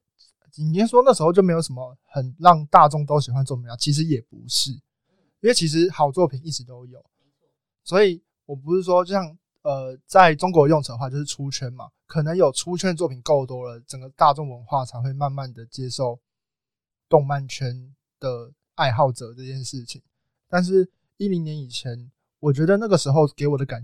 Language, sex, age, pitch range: Chinese, male, 20-39, 130-155 Hz